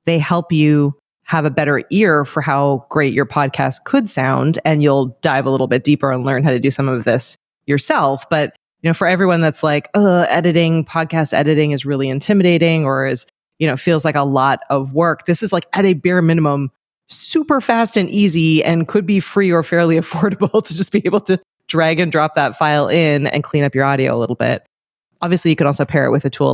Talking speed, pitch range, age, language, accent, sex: 225 wpm, 135-170 Hz, 20-39, English, American, female